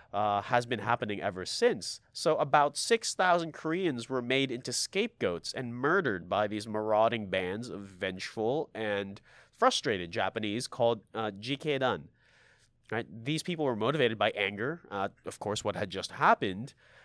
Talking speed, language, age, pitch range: 145 wpm, English, 30-49, 110-150 Hz